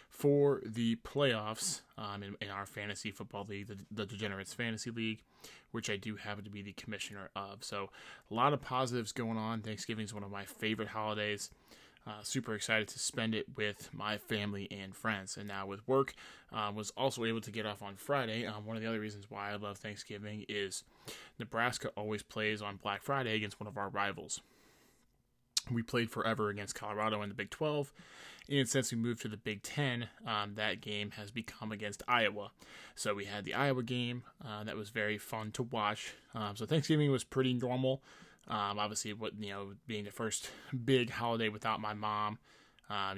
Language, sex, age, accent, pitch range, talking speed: English, male, 20-39, American, 105-120 Hz, 195 wpm